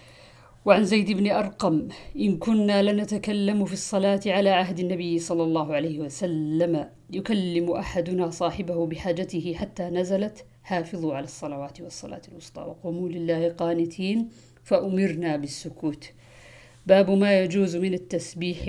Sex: female